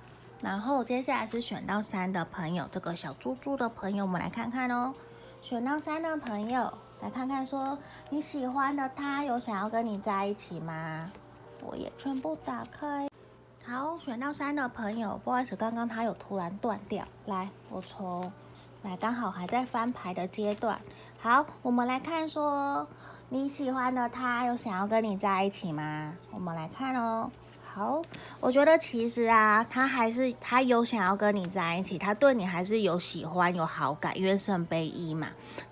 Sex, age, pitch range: female, 30-49, 175-250 Hz